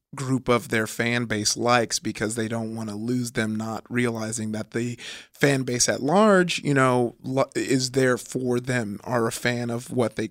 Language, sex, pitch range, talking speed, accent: English, male, 115-130 Hz, 190 wpm, American